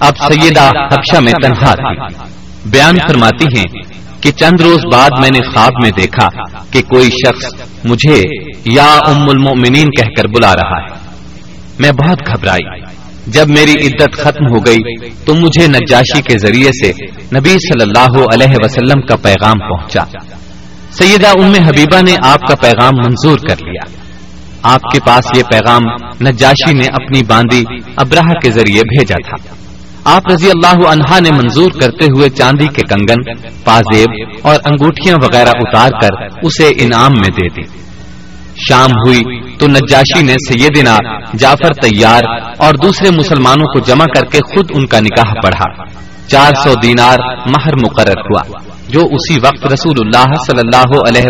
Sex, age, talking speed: male, 40-59, 155 wpm